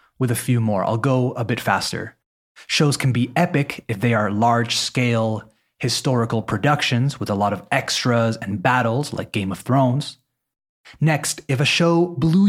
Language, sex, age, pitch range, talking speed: Spanish, male, 30-49, 110-135 Hz, 170 wpm